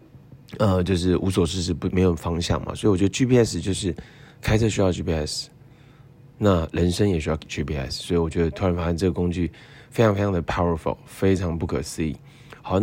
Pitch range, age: 85-110 Hz, 20-39